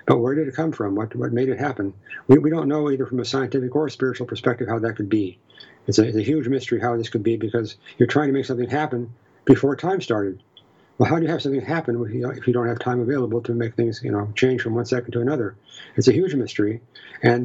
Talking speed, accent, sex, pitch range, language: 260 wpm, American, male, 115-130 Hz, English